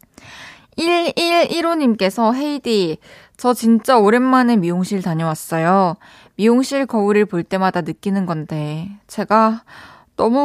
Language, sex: Korean, female